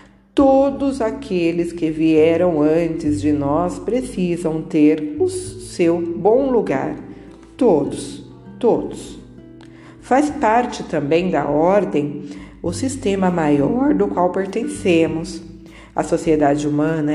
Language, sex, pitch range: Portuguese, female, 150-210 Hz